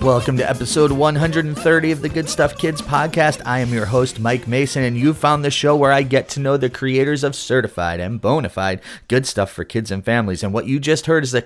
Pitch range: 100-135 Hz